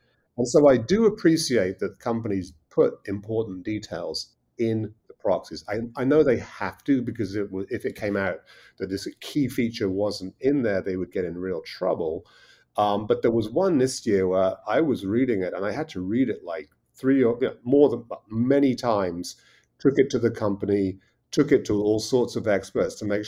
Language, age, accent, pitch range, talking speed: English, 40-59, British, 100-120 Hz, 195 wpm